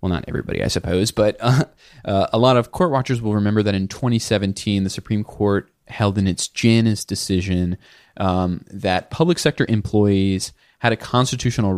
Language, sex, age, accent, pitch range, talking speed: English, male, 20-39, American, 95-120 Hz, 175 wpm